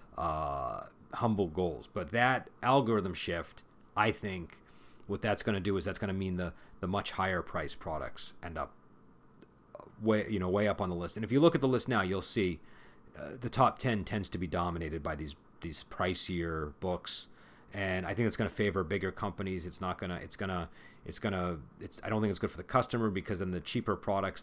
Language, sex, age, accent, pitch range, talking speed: English, male, 40-59, American, 85-105 Hz, 220 wpm